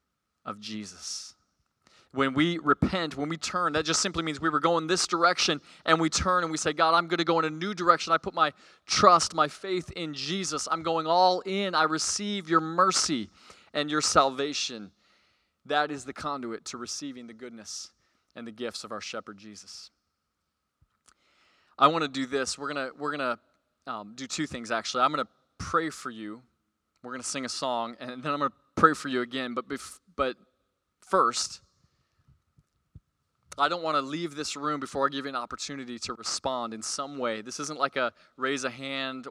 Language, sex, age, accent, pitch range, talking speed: English, male, 20-39, American, 125-165 Hz, 200 wpm